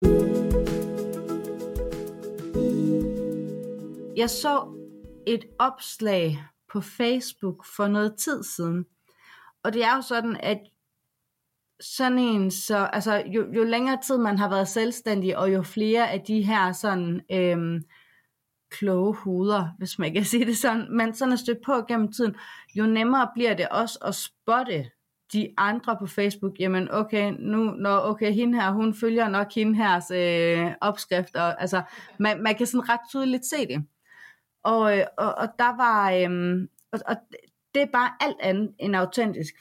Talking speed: 150 wpm